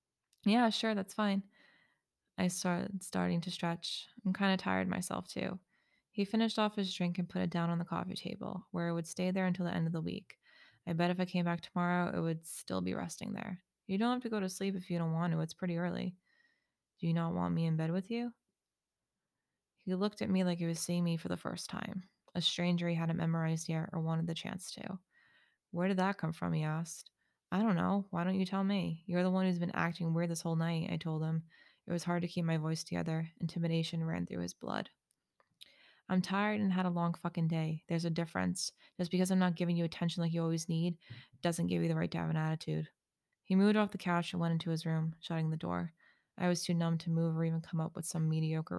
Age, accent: 20-39, American